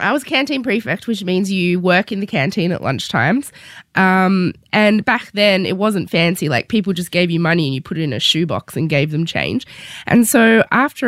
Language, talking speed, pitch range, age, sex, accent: English, 215 wpm, 165-215 Hz, 20-39, female, Australian